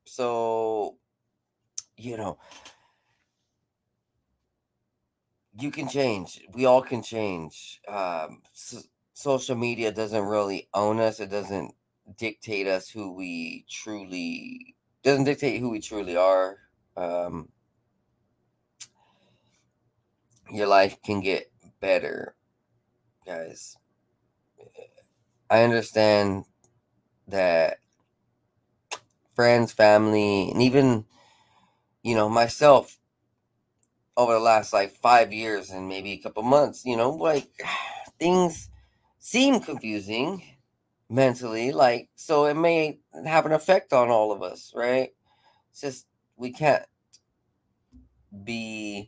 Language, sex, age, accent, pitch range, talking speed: English, male, 30-49, American, 100-125 Hz, 100 wpm